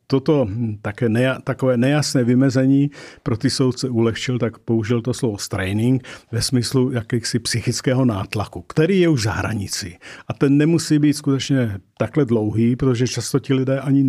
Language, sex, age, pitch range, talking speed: Czech, male, 50-69, 110-135 Hz, 160 wpm